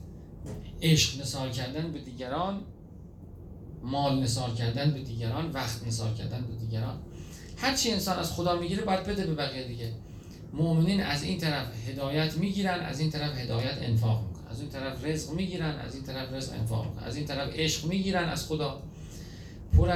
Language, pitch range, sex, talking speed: Persian, 115-155 Hz, male, 170 wpm